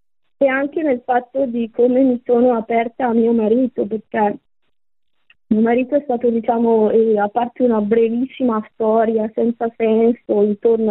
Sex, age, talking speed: female, 20-39, 150 wpm